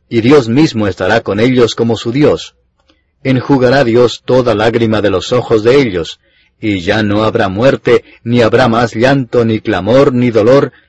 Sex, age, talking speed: male, 40-59, 170 wpm